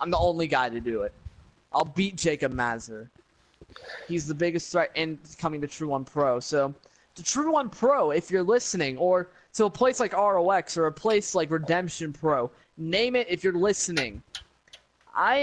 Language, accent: English, American